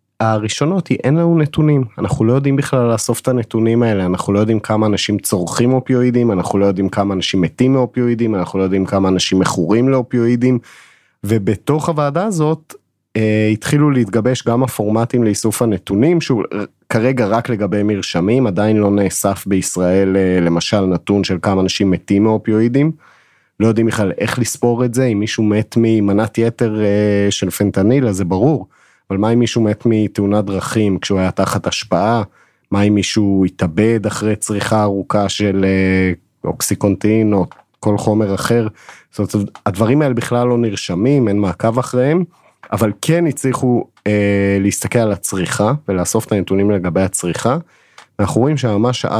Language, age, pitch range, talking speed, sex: Hebrew, 30-49, 100-120 Hz, 155 wpm, male